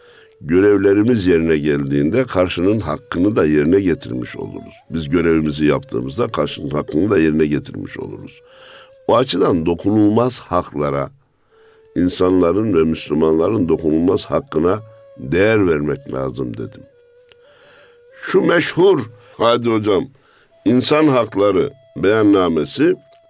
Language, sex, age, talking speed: Turkish, male, 60-79, 100 wpm